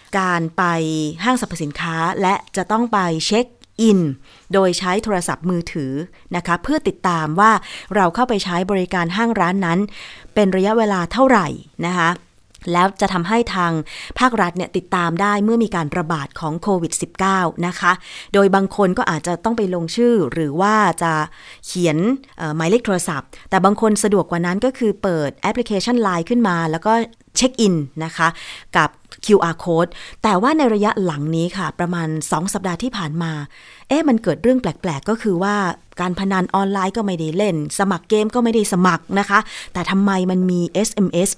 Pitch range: 175-225 Hz